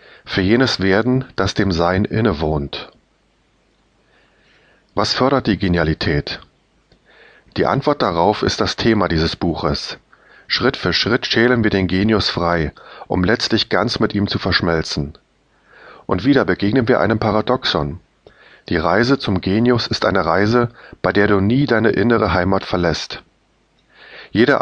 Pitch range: 90-115 Hz